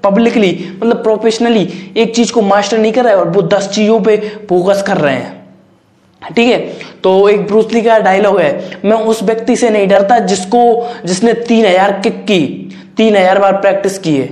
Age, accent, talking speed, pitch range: 20-39, native, 155 wpm, 180-215 Hz